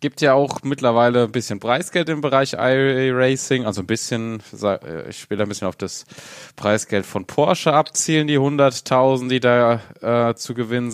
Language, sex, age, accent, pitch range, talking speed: German, male, 20-39, German, 115-140 Hz, 170 wpm